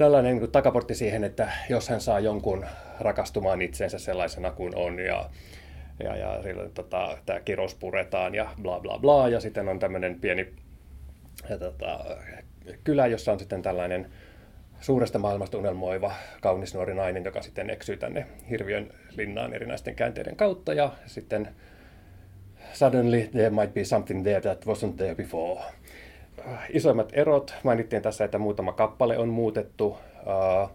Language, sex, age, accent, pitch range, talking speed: Finnish, male, 30-49, native, 95-115 Hz, 140 wpm